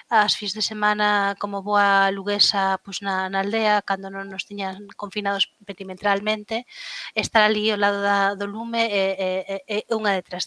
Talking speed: 170 wpm